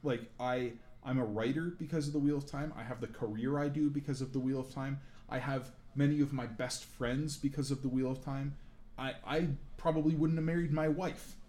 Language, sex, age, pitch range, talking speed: English, male, 20-39, 110-135 Hz, 230 wpm